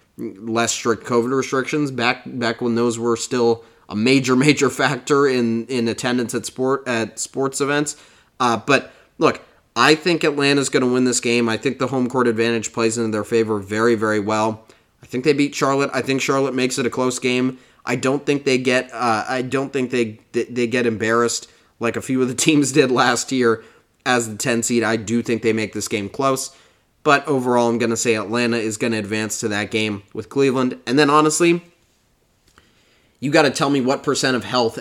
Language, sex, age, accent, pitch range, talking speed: English, male, 20-39, American, 115-135 Hz, 210 wpm